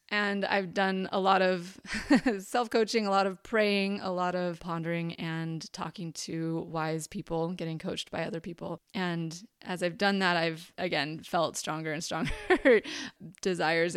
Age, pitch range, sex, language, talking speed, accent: 20-39, 170-205 Hz, female, English, 160 wpm, American